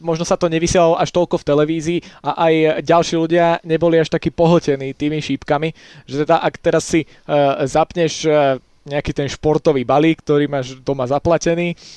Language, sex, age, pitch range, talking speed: Slovak, male, 20-39, 145-165 Hz, 160 wpm